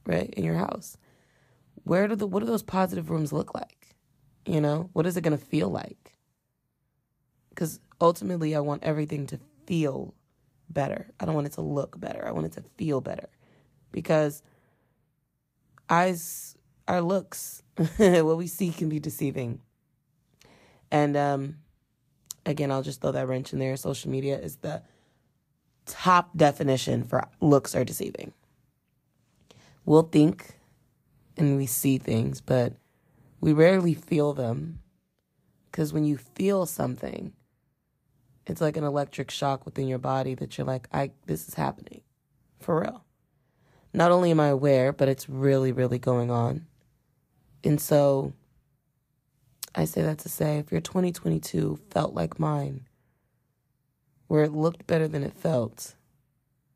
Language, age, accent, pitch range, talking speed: English, 20-39, American, 135-155 Hz, 145 wpm